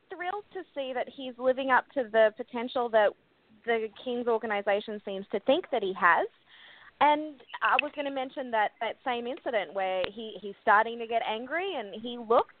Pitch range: 200-280 Hz